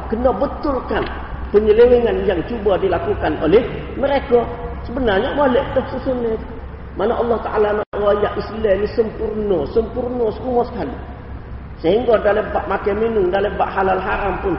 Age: 40-59